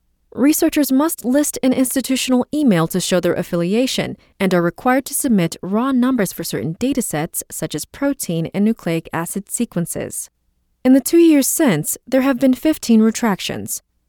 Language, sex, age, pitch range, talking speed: English, female, 20-39, 170-260 Hz, 160 wpm